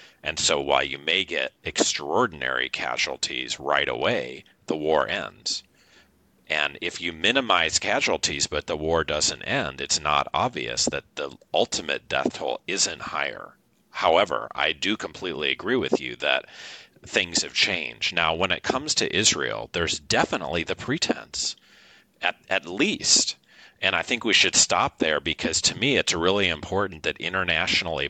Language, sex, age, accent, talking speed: English, male, 40-59, American, 155 wpm